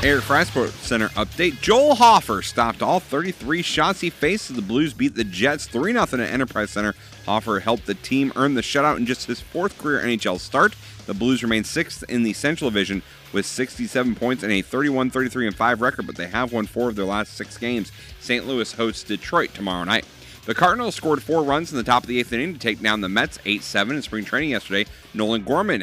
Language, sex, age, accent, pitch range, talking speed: English, male, 30-49, American, 100-130 Hz, 210 wpm